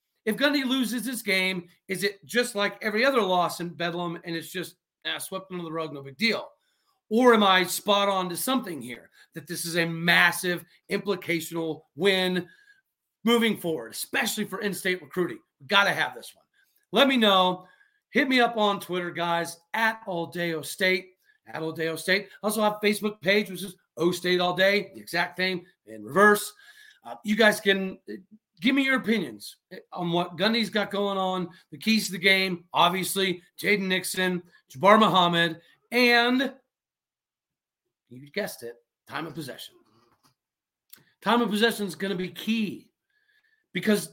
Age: 40-59